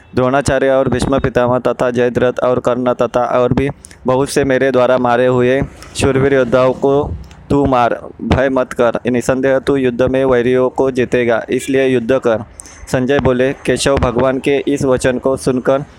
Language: Marathi